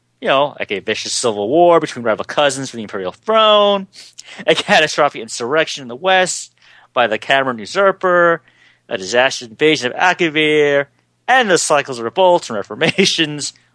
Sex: male